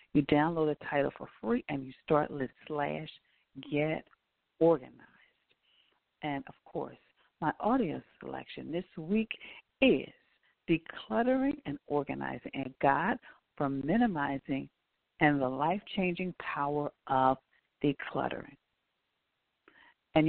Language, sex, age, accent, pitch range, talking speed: English, female, 50-69, American, 135-205 Hz, 105 wpm